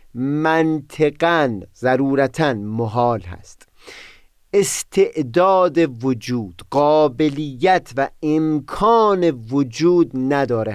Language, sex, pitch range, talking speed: Persian, male, 130-175 Hz, 60 wpm